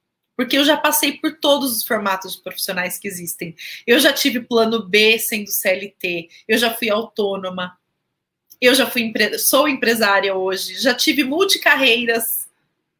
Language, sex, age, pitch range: Portuguese, female, 30-49, 205-255 Hz